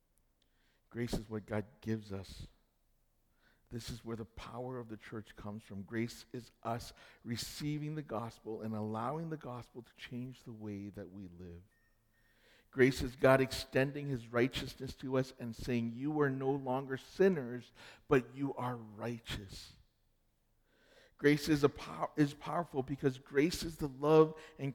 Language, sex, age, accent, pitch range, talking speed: English, male, 50-69, American, 105-135 Hz, 150 wpm